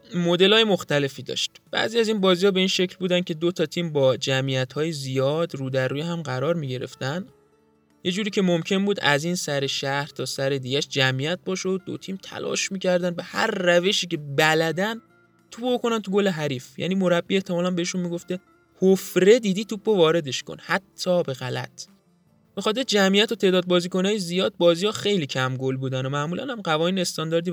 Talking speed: 180 wpm